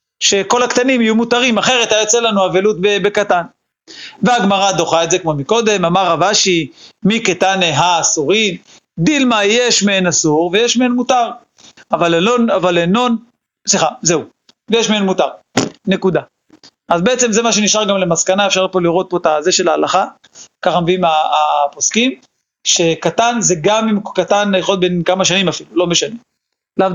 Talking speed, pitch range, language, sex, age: 155 wpm, 175-230 Hz, Hebrew, male, 40-59